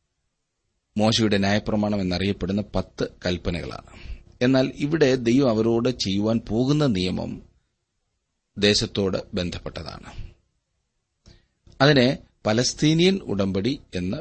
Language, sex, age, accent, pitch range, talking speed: Malayalam, male, 30-49, native, 90-110 Hz, 70 wpm